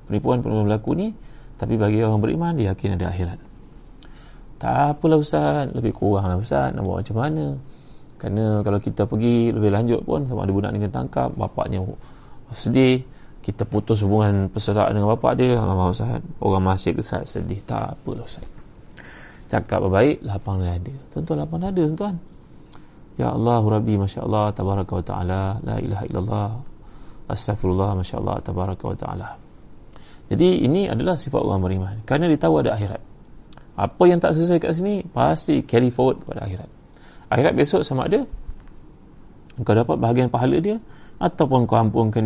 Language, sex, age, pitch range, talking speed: Malay, male, 20-39, 100-140 Hz, 165 wpm